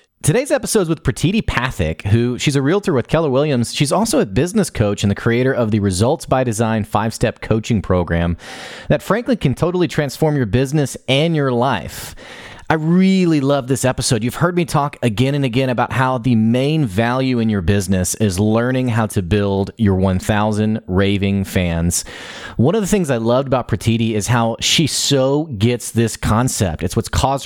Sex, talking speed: male, 190 wpm